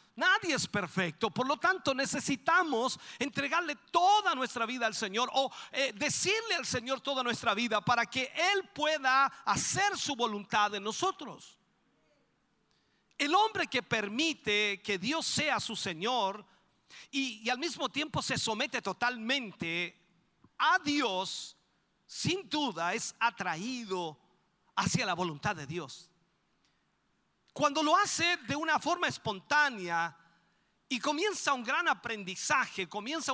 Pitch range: 200-300 Hz